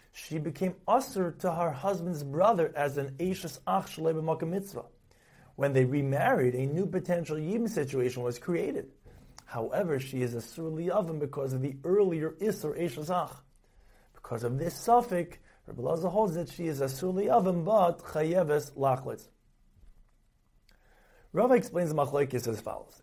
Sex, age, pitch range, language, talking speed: male, 40-59, 130-175 Hz, English, 145 wpm